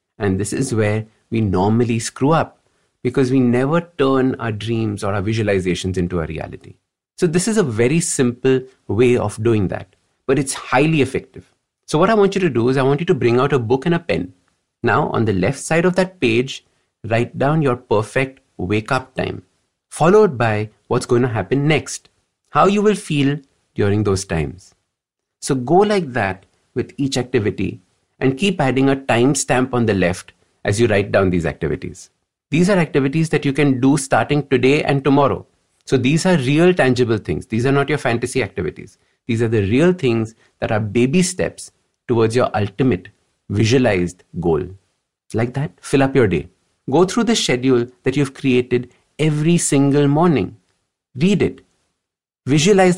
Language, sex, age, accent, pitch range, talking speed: English, male, 50-69, Indian, 110-145 Hz, 180 wpm